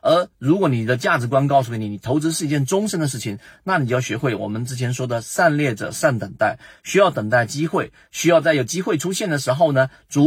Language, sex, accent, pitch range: Chinese, male, native, 115-155 Hz